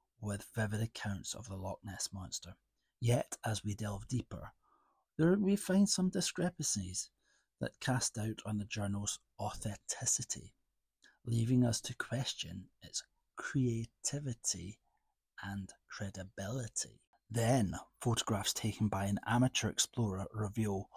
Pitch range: 105-125 Hz